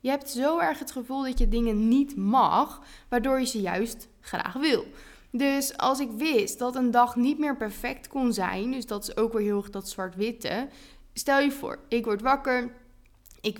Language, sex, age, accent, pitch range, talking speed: Dutch, female, 20-39, Dutch, 205-270 Hz, 200 wpm